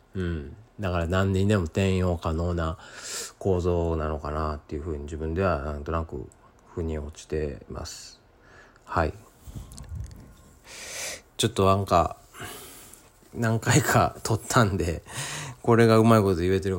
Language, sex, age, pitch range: Japanese, male, 40-59, 85-115 Hz